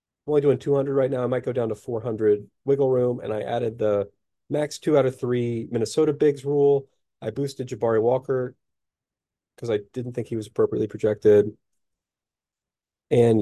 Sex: male